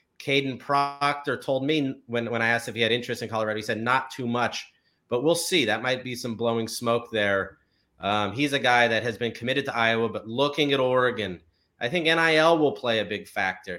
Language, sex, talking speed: English, male, 220 wpm